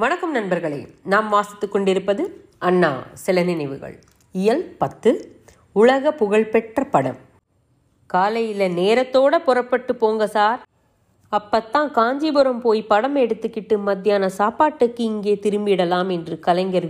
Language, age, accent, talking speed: Tamil, 30-49, native, 90 wpm